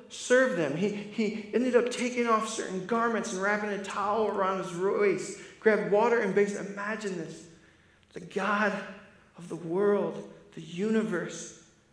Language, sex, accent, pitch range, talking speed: English, male, American, 175-215 Hz, 150 wpm